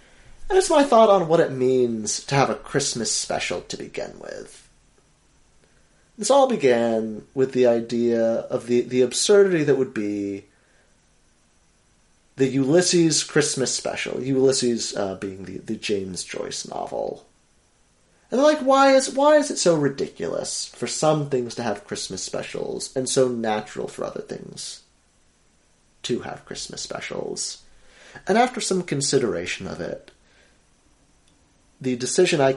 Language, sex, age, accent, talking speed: English, male, 30-49, American, 140 wpm